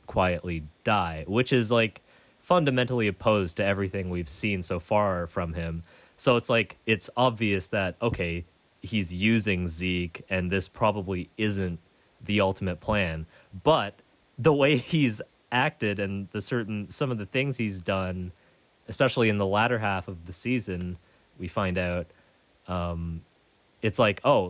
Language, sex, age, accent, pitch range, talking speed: English, male, 30-49, American, 90-105 Hz, 150 wpm